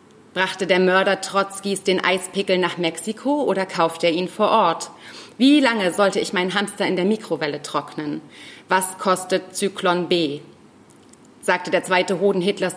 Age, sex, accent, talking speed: 30-49, female, German, 155 wpm